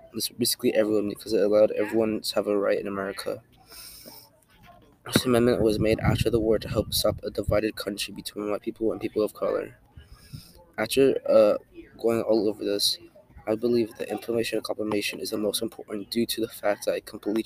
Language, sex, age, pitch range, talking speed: English, male, 20-39, 105-120 Hz, 195 wpm